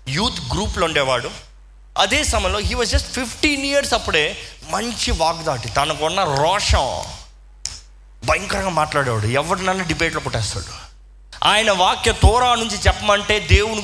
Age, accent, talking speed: 20-39, native, 115 wpm